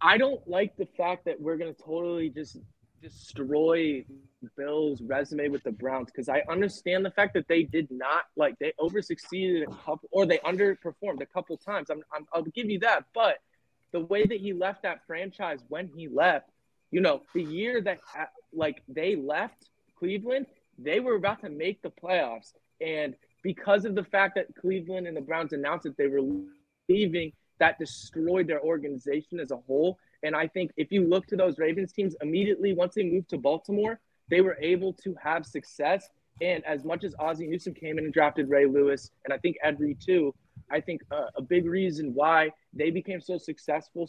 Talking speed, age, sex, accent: 195 wpm, 20-39, male, American